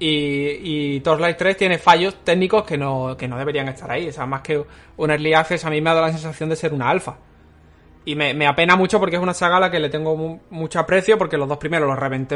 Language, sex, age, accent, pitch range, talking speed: Spanish, male, 20-39, Spanish, 145-180 Hz, 260 wpm